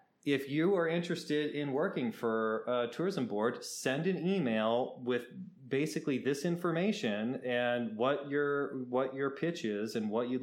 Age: 30-49